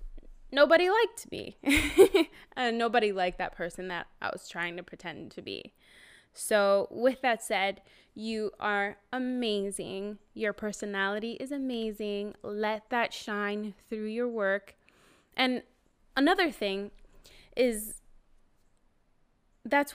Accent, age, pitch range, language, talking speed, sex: American, 10-29, 205-245 Hz, English, 115 wpm, female